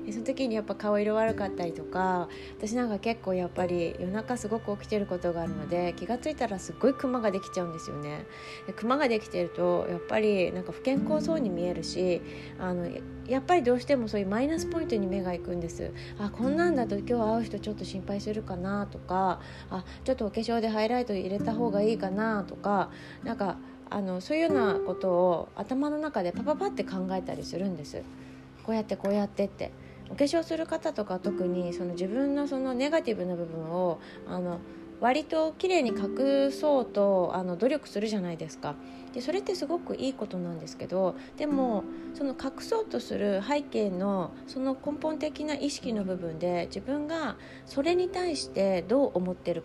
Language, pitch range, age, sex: Japanese, 175-260 Hz, 20-39, female